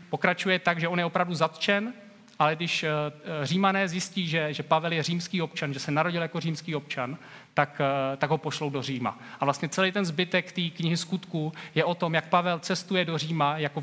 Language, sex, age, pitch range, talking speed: Czech, male, 30-49, 140-180 Hz, 195 wpm